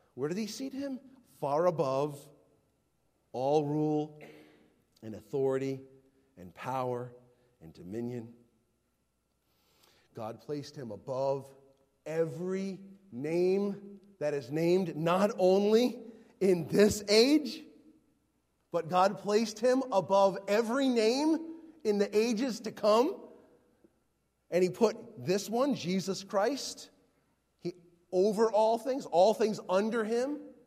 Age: 40-59